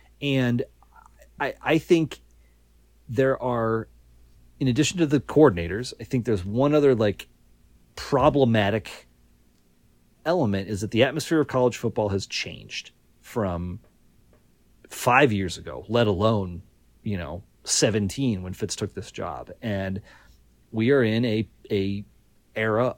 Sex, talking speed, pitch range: male, 130 wpm, 95-140 Hz